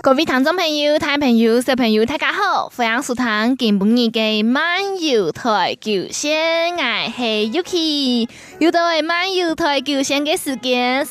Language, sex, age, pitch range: Chinese, female, 20-39, 225-285 Hz